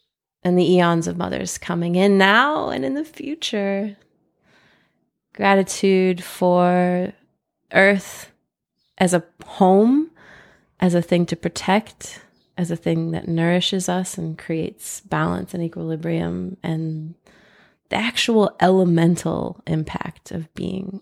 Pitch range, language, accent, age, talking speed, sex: 170-195 Hz, English, American, 20-39, 115 wpm, female